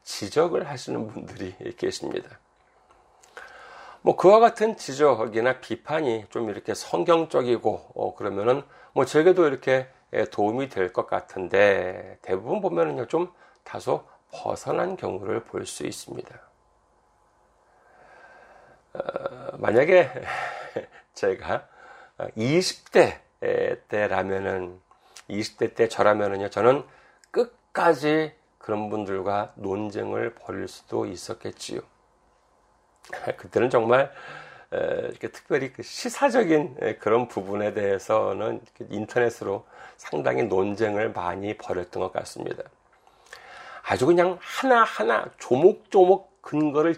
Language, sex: Korean, male